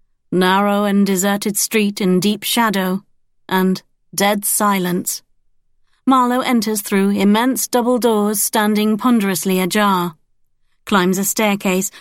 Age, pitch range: 40-59, 190-245 Hz